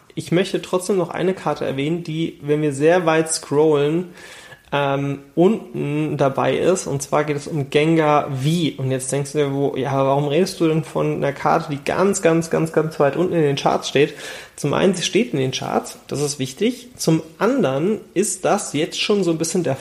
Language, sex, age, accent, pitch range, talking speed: German, male, 30-49, German, 140-170 Hz, 205 wpm